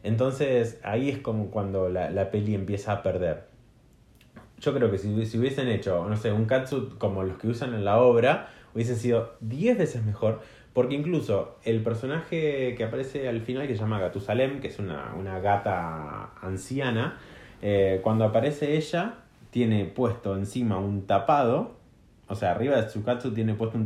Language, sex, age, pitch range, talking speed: Spanish, male, 20-39, 100-125 Hz, 175 wpm